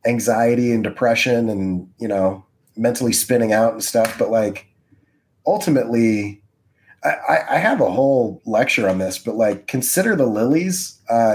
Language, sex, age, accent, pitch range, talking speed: English, male, 30-49, American, 105-130 Hz, 150 wpm